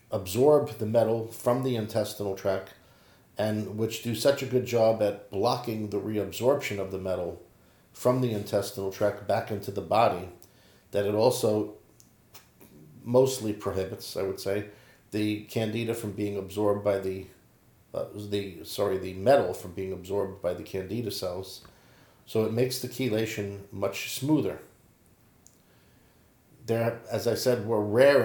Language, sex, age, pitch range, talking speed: English, male, 50-69, 95-115 Hz, 145 wpm